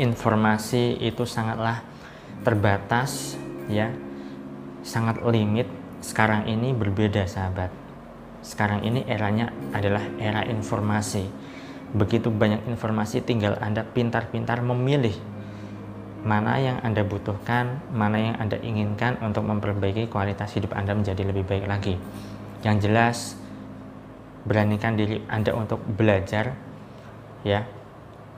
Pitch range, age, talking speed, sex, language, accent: 100-115 Hz, 20-39, 105 wpm, male, Indonesian, native